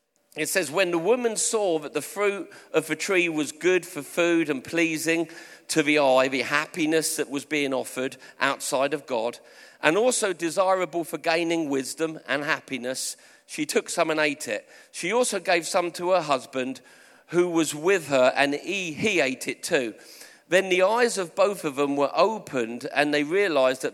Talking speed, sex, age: 185 wpm, male, 40-59